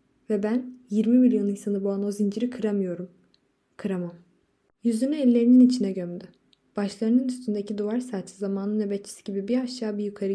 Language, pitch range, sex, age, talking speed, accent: Turkish, 200-235 Hz, female, 20-39, 145 wpm, native